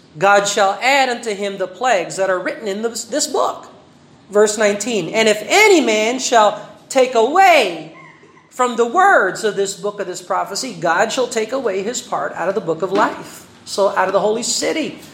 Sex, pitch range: male, 195-270 Hz